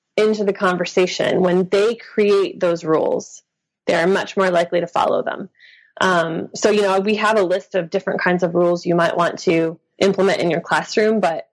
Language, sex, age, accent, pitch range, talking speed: English, female, 20-39, American, 175-205 Hz, 200 wpm